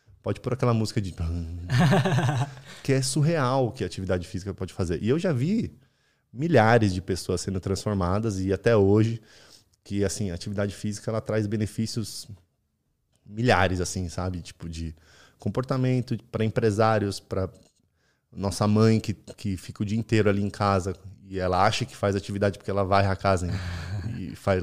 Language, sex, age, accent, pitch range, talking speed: Portuguese, male, 20-39, Brazilian, 95-120 Hz, 170 wpm